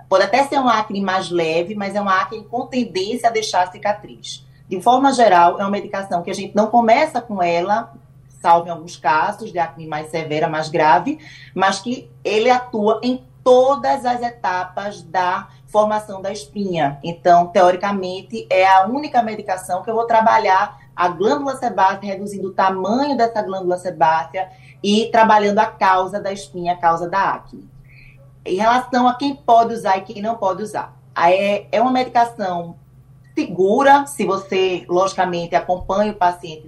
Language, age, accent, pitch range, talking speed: Portuguese, 20-39, Brazilian, 170-225 Hz, 165 wpm